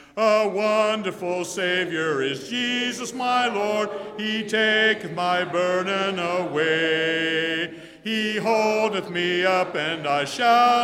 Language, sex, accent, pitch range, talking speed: English, male, American, 170-225 Hz, 105 wpm